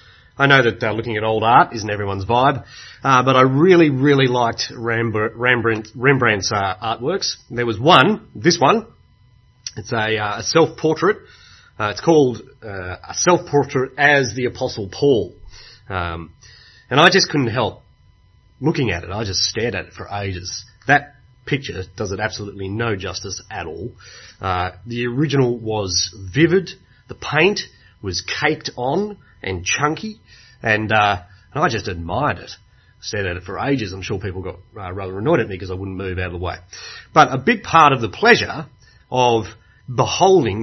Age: 30-49